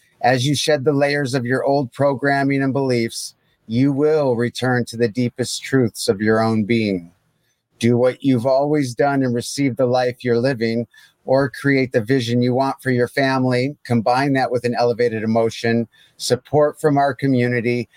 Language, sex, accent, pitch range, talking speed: English, male, American, 120-140 Hz, 175 wpm